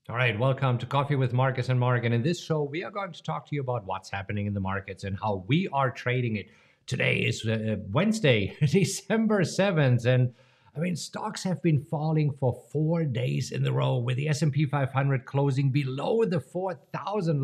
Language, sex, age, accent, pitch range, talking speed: English, male, 50-69, German, 115-150 Hz, 215 wpm